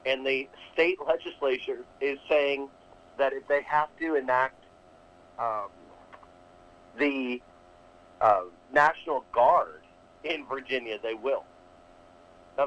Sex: male